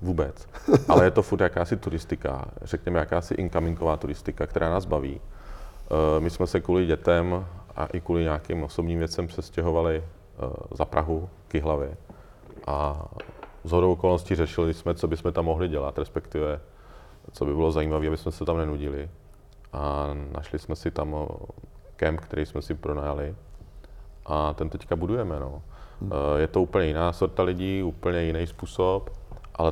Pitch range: 75-85 Hz